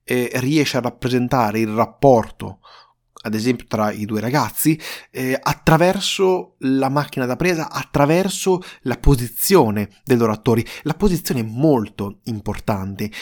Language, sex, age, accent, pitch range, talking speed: Italian, male, 30-49, native, 115-155 Hz, 130 wpm